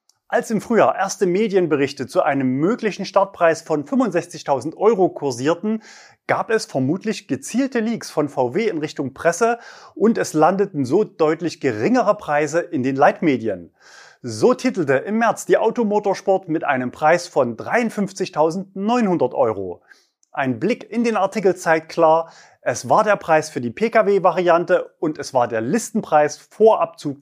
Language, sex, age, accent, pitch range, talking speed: German, male, 30-49, German, 155-215 Hz, 145 wpm